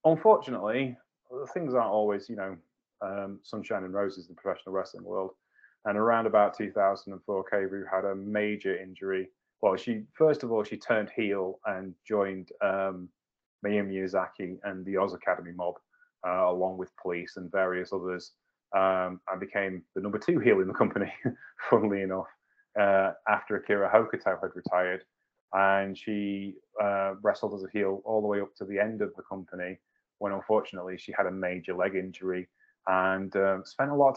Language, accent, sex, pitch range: English, British, male, 95-110 Hz